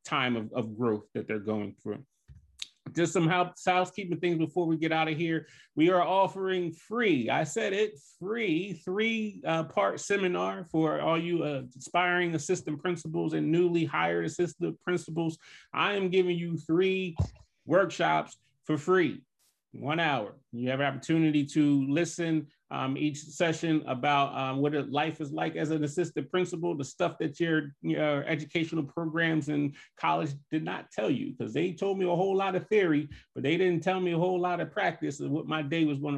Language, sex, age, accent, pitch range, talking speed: English, male, 30-49, American, 145-175 Hz, 180 wpm